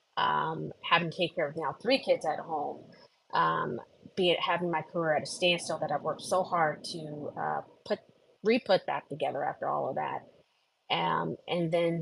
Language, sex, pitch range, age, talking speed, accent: English, female, 155-185 Hz, 30-49, 195 wpm, American